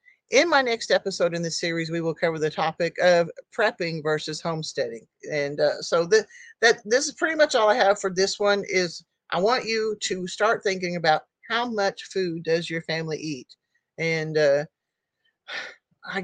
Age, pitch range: 50-69, 165-260 Hz